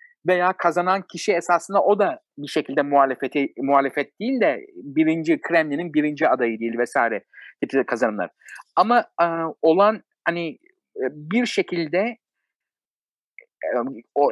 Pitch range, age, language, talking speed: 155-230 Hz, 60-79, Turkish, 115 wpm